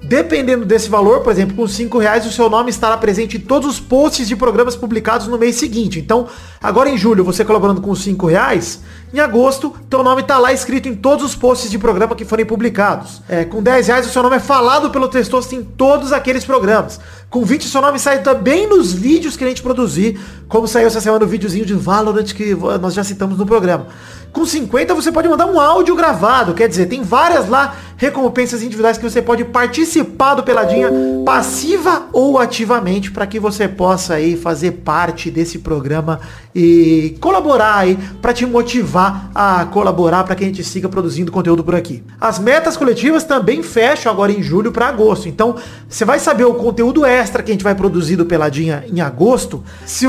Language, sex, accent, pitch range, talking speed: Portuguese, male, Brazilian, 190-255 Hz, 200 wpm